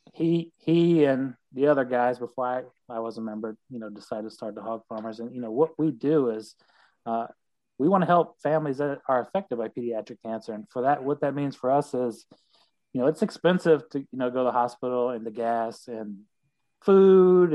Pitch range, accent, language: 115-145 Hz, American, English